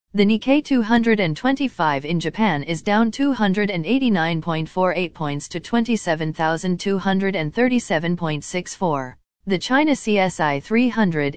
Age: 40-59